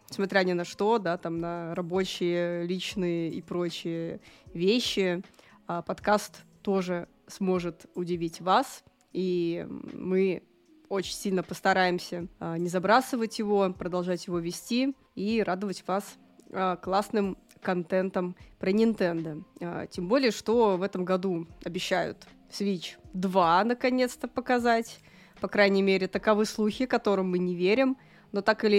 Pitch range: 180-215 Hz